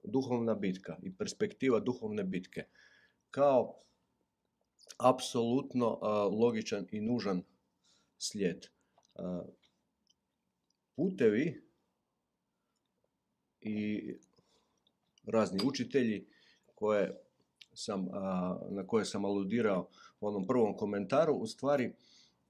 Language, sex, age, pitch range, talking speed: Croatian, male, 50-69, 105-145 Hz, 80 wpm